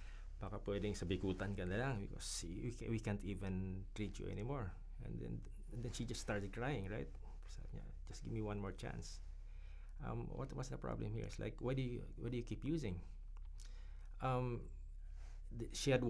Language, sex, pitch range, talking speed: English, male, 90-115 Hz, 160 wpm